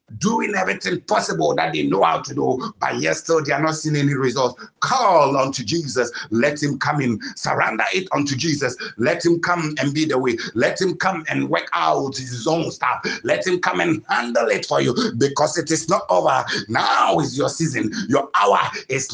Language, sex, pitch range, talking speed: English, male, 145-180 Hz, 200 wpm